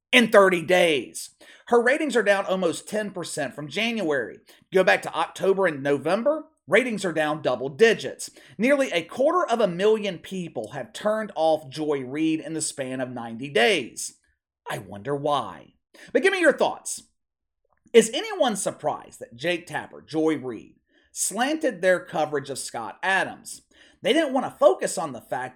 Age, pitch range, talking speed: 30-49, 140-200 Hz, 165 wpm